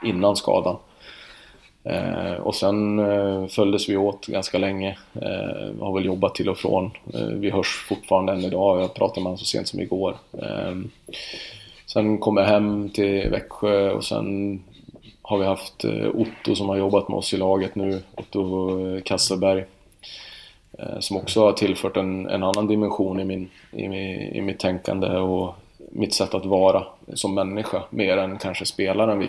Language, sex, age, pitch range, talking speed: Swedish, male, 30-49, 95-100 Hz, 170 wpm